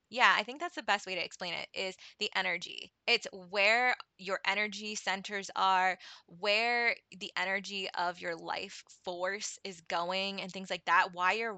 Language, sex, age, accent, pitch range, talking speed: English, female, 20-39, American, 175-220 Hz, 175 wpm